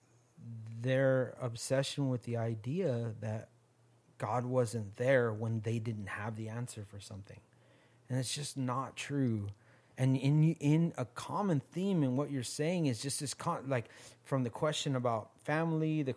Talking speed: 155 wpm